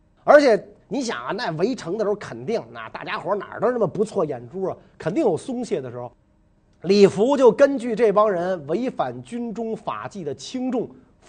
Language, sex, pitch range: Chinese, male, 155-235 Hz